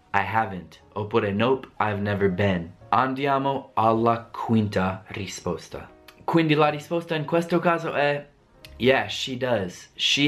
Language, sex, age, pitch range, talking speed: Italian, male, 20-39, 105-135 Hz, 130 wpm